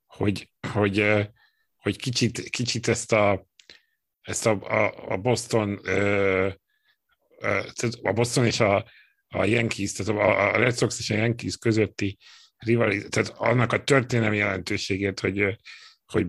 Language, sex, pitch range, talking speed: Hungarian, male, 95-115 Hz, 140 wpm